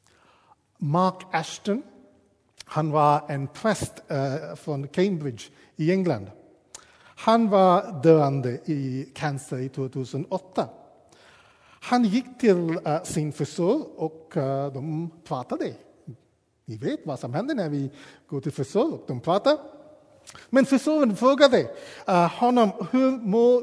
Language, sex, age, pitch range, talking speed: Swedish, male, 50-69, 145-220 Hz, 110 wpm